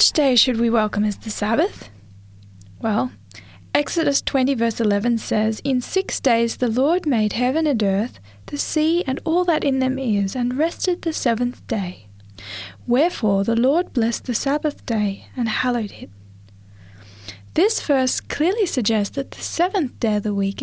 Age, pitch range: 10-29, 195-275 Hz